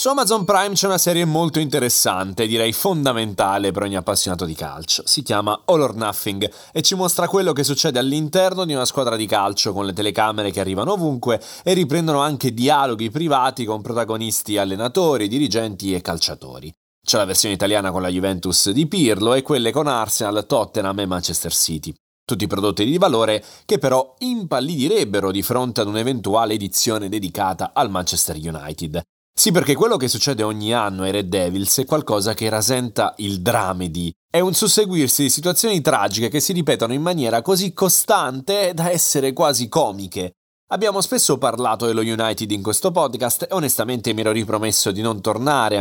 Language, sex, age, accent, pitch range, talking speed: Italian, male, 30-49, native, 100-145 Hz, 170 wpm